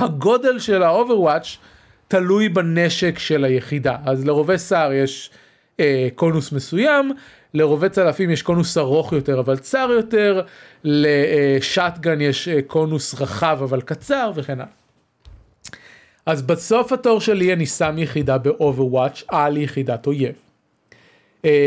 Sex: male